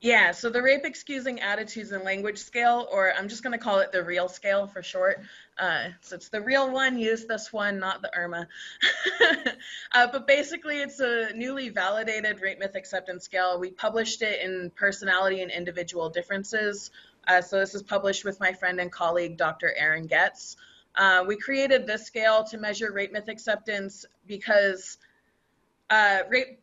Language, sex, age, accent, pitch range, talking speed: English, female, 20-39, American, 190-240 Hz, 170 wpm